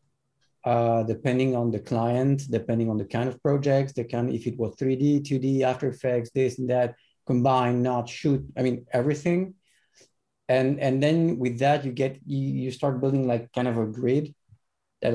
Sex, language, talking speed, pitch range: male, English, 180 wpm, 115-135 Hz